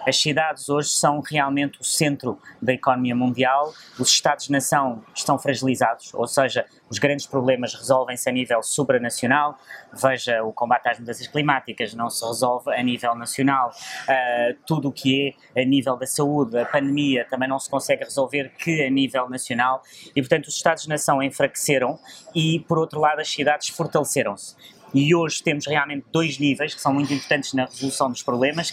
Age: 20-39